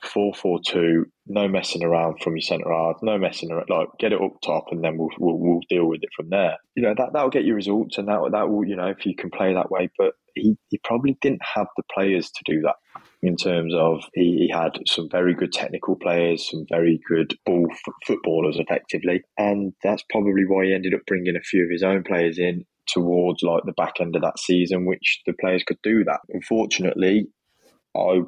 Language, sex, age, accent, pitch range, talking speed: English, male, 20-39, British, 85-95 Hz, 220 wpm